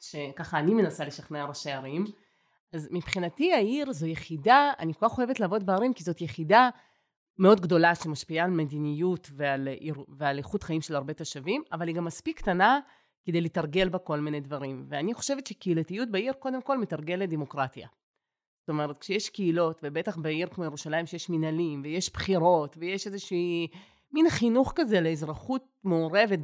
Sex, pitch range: female, 155-210 Hz